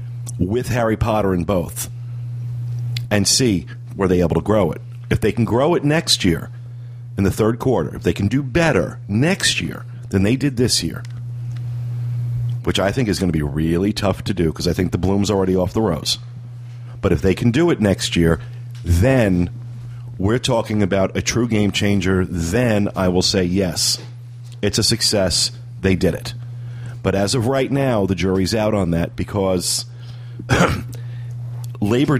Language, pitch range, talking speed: English, 100-120 Hz, 175 wpm